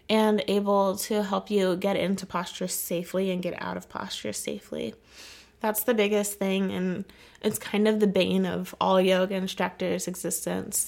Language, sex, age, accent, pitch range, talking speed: English, female, 20-39, American, 180-210 Hz, 165 wpm